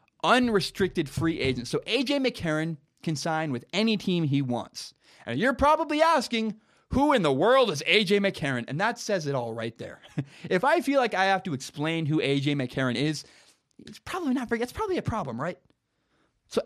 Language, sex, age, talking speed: English, male, 20-39, 185 wpm